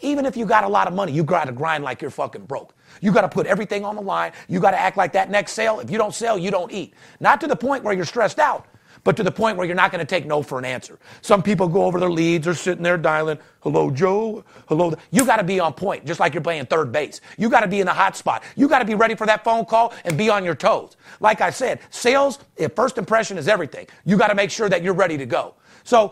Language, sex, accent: English, male, American